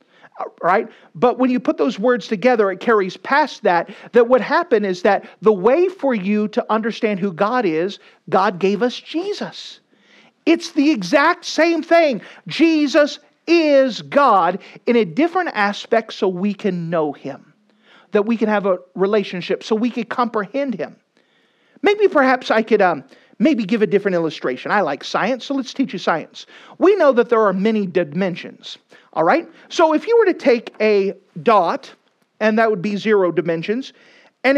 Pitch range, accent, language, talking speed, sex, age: 195-280 Hz, American, English, 175 wpm, male, 50-69